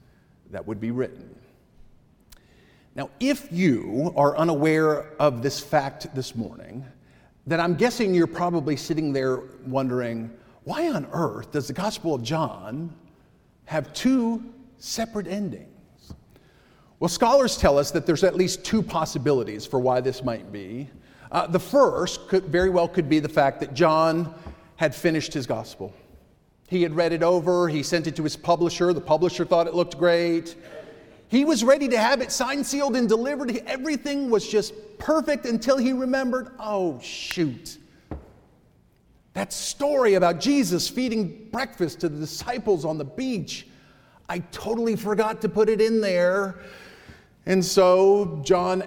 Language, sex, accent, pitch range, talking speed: English, male, American, 150-215 Hz, 150 wpm